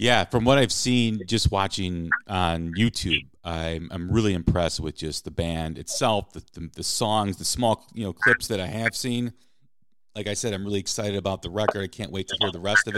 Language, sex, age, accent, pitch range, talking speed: English, male, 40-59, American, 100-130 Hz, 220 wpm